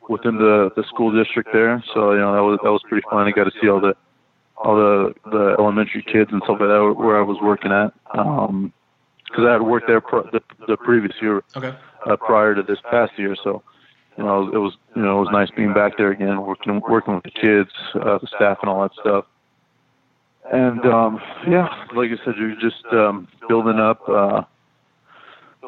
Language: English